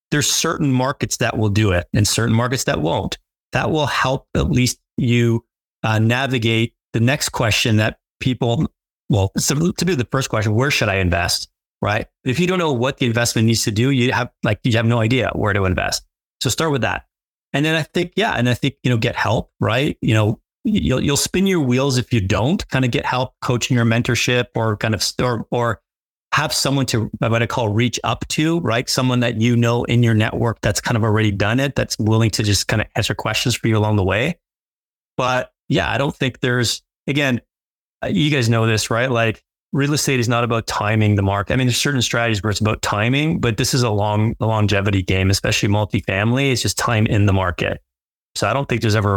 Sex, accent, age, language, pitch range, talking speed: male, American, 30-49, English, 105-130 Hz, 225 wpm